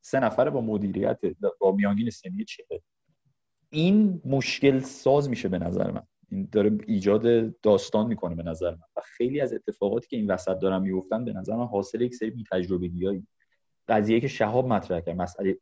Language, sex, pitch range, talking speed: Persian, male, 95-140 Hz, 175 wpm